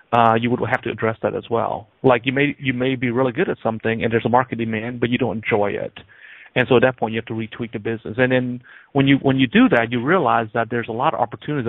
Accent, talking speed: American, 285 wpm